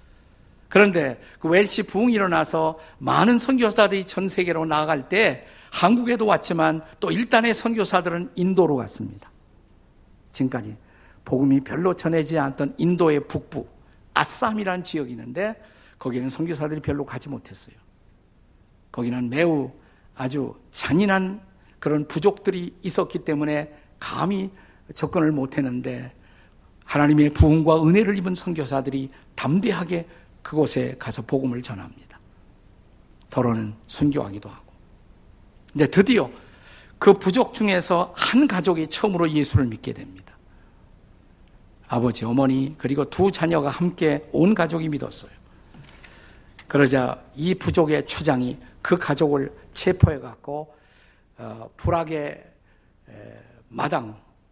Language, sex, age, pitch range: Korean, male, 50-69, 120-175 Hz